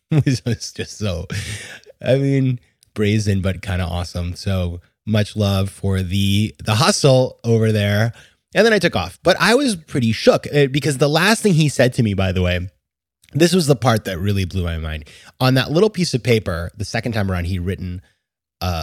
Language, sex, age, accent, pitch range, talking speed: English, male, 20-39, American, 90-120 Hz, 200 wpm